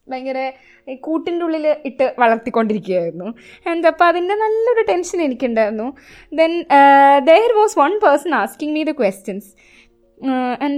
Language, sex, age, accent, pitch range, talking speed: Malayalam, female, 20-39, native, 235-330 Hz, 115 wpm